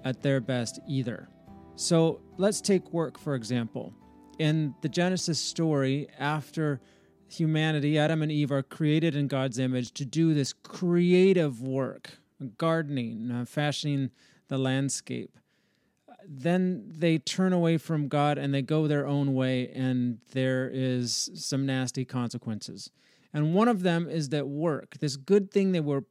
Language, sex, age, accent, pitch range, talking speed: English, male, 30-49, American, 130-155 Hz, 145 wpm